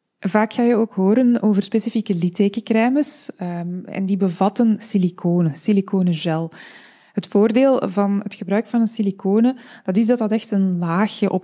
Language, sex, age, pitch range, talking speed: Dutch, female, 20-39, 190-220 Hz, 150 wpm